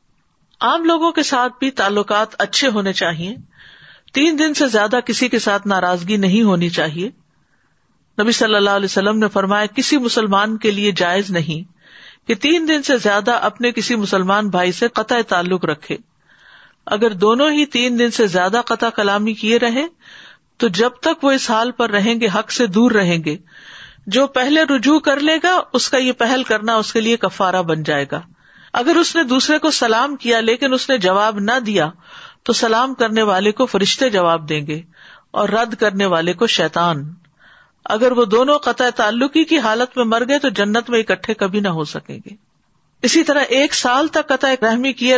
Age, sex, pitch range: 50-69, female, 195-260 Hz